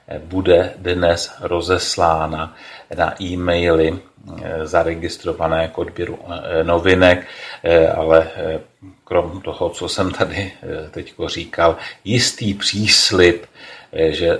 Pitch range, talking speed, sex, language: 80-95 Hz, 85 wpm, male, Czech